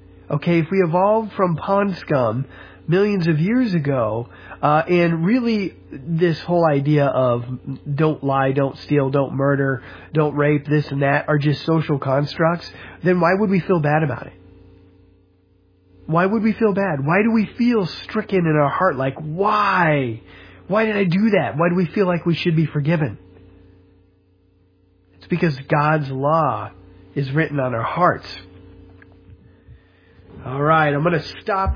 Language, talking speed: English, 160 wpm